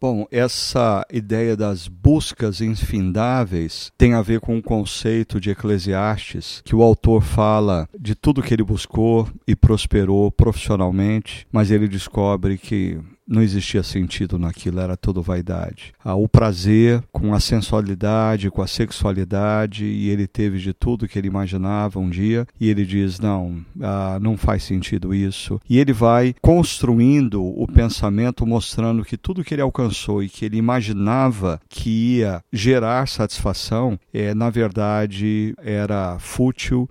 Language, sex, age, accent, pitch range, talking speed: Portuguese, male, 50-69, Brazilian, 100-115 Hz, 145 wpm